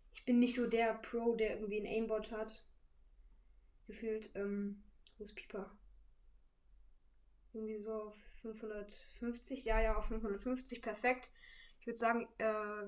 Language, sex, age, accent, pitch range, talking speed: German, female, 10-29, German, 200-235 Hz, 135 wpm